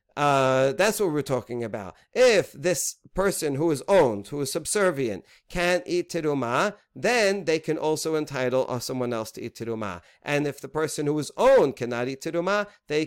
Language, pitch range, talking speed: English, 135-180 Hz, 175 wpm